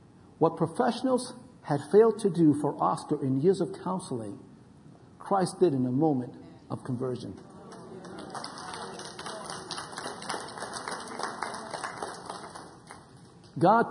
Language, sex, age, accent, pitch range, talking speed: English, male, 50-69, American, 140-185 Hz, 85 wpm